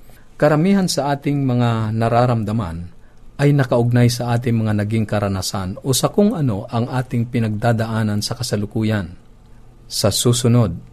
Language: Filipino